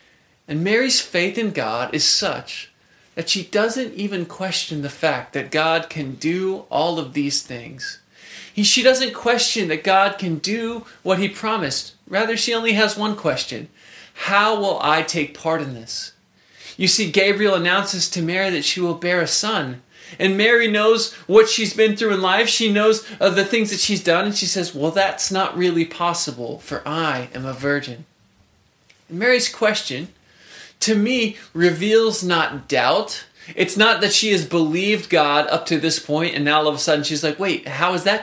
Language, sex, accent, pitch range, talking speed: English, male, American, 155-205 Hz, 190 wpm